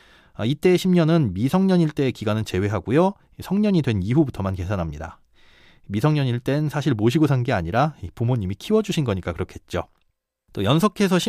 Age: 40-59